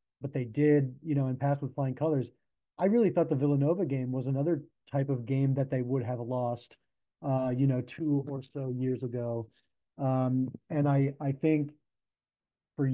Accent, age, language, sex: American, 30-49, English, male